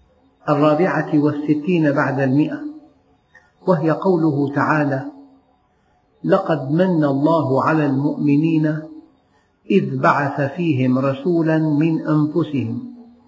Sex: male